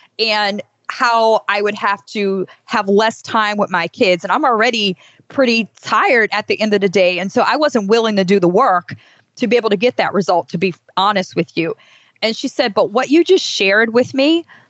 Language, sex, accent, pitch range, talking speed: English, female, American, 185-230 Hz, 220 wpm